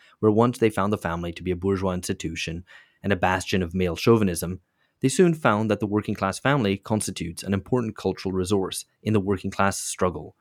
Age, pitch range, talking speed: 30-49, 90-110 Hz, 200 wpm